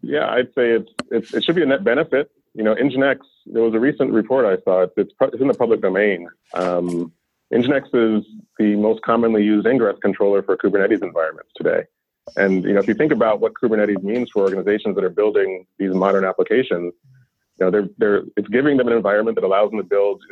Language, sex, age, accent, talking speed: English, male, 30-49, American, 215 wpm